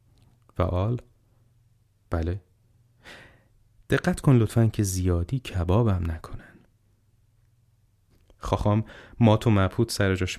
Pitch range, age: 95-115 Hz, 30-49